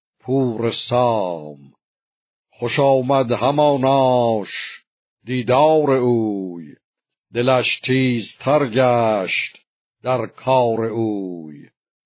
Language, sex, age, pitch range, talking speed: Persian, male, 60-79, 115-135 Hz, 60 wpm